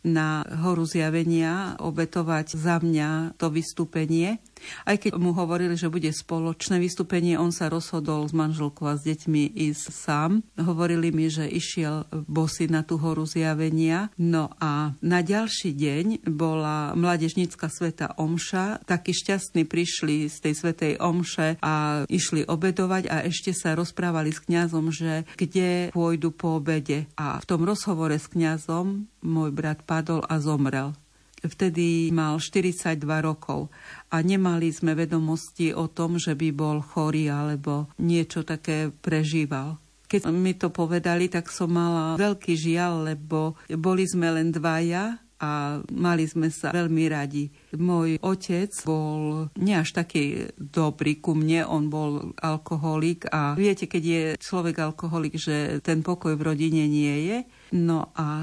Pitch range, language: 155-175 Hz, Slovak